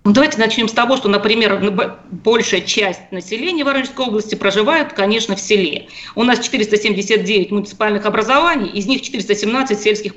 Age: 40-59